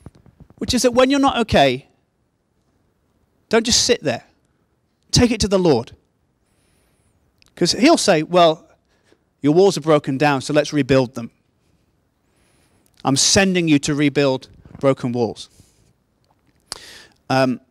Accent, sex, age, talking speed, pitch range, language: British, male, 30-49, 125 wpm, 145-210 Hz, English